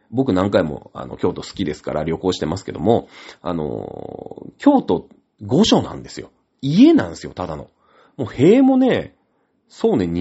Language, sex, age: Japanese, male, 30-49